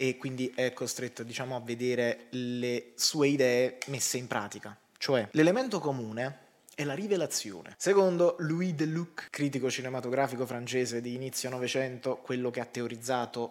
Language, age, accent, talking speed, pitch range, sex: Italian, 20-39, native, 140 wpm, 120-145 Hz, male